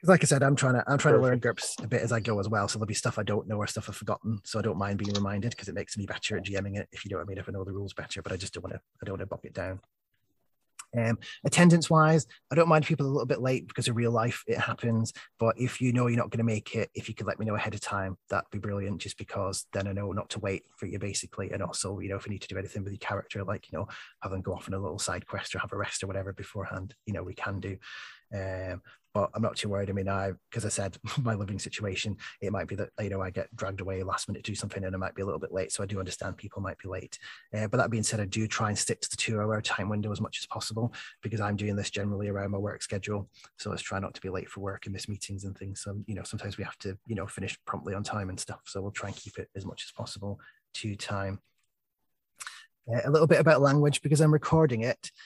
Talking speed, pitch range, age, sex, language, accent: 305 wpm, 95-115 Hz, 20-39, male, English, British